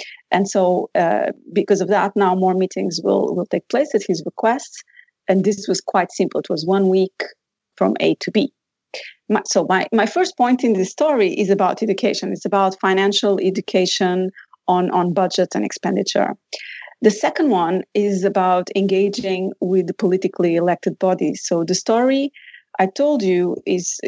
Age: 30-49